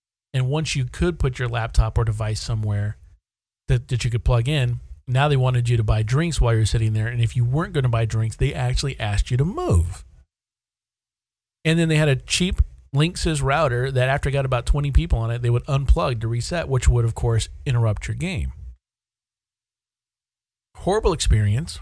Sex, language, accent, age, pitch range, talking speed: male, English, American, 40-59, 110-140 Hz, 200 wpm